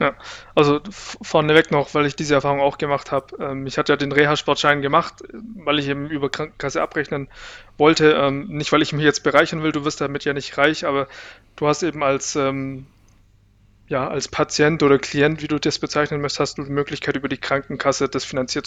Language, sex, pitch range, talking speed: German, male, 140-160 Hz, 195 wpm